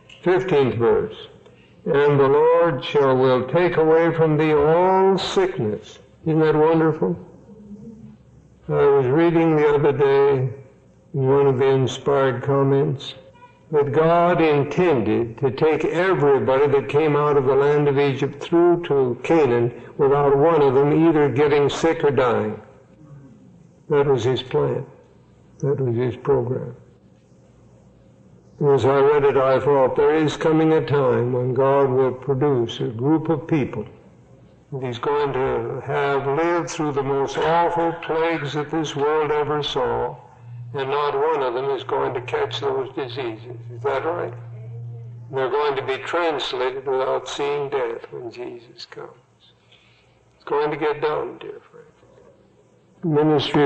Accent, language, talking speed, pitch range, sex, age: American, English, 145 wpm, 135-170 Hz, male, 60-79